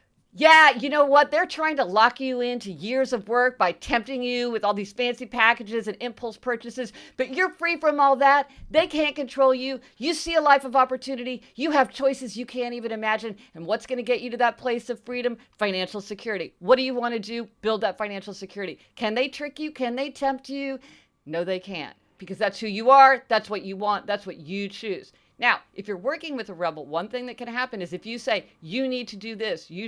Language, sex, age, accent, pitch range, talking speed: English, female, 50-69, American, 195-255 Hz, 235 wpm